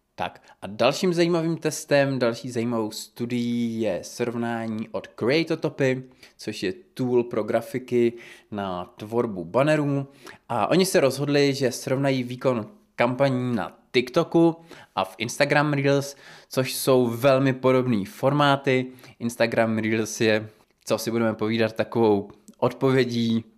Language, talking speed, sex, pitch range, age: Czech, 120 wpm, male, 115-145 Hz, 20-39